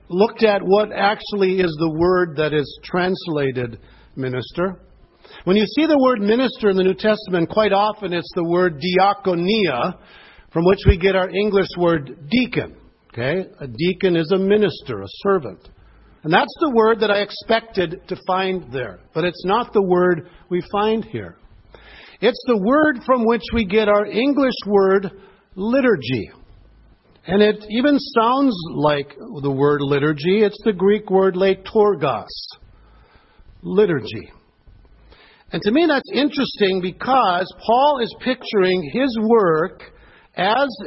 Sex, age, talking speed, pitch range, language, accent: male, 50-69, 145 wpm, 175-225 Hz, English, American